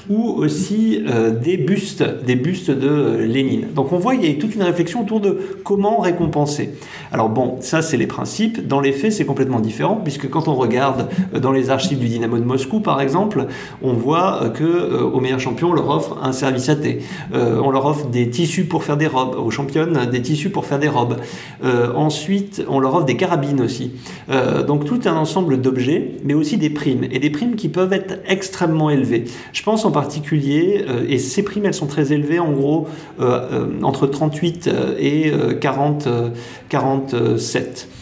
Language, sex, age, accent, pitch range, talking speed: English, male, 40-59, French, 130-170 Hz, 195 wpm